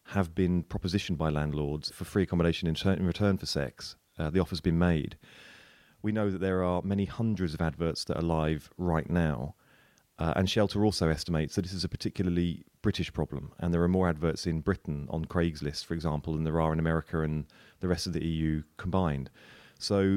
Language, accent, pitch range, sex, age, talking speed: English, British, 80-100 Hz, male, 30-49, 200 wpm